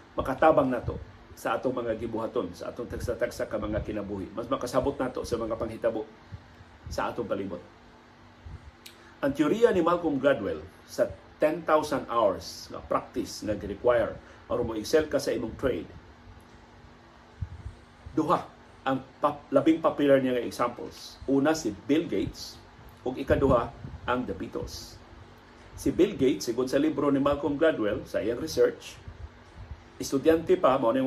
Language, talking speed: Filipino, 135 wpm